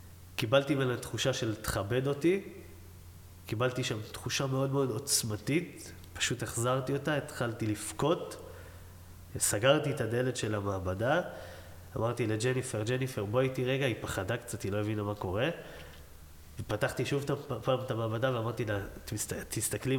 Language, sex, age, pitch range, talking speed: Hebrew, male, 20-39, 100-130 Hz, 135 wpm